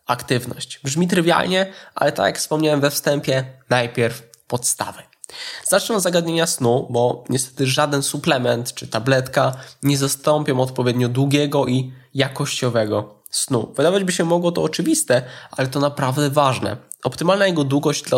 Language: Polish